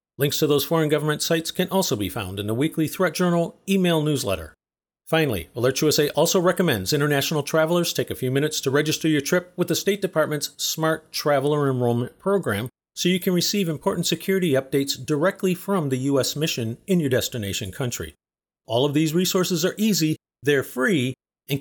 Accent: American